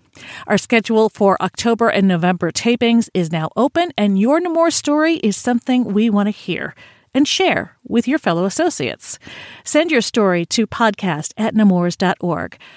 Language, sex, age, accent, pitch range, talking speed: English, female, 40-59, American, 190-255 Hz, 155 wpm